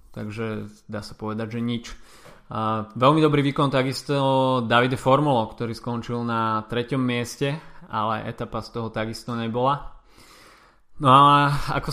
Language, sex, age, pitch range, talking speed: Slovak, male, 20-39, 115-135 Hz, 135 wpm